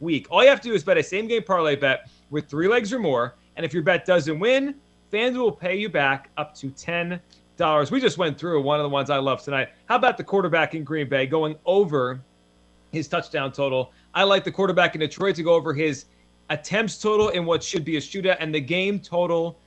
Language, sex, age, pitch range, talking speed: English, male, 30-49, 145-185 Hz, 230 wpm